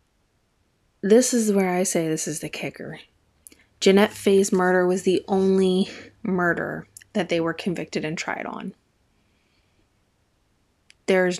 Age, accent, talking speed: 20-39, American, 125 wpm